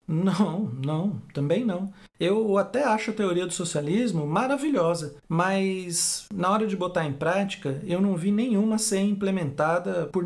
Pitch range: 165-230 Hz